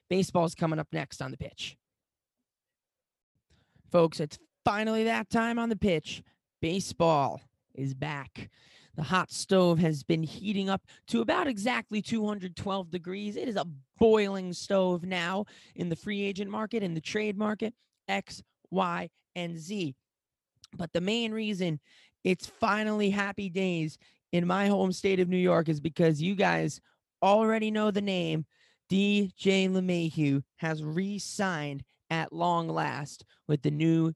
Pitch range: 160-205 Hz